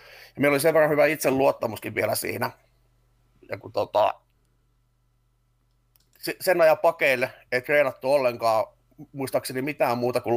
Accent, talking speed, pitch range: native, 135 wpm, 120-135 Hz